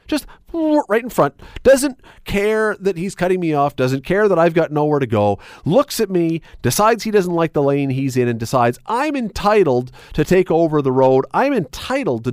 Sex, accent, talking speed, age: male, American, 205 wpm, 40-59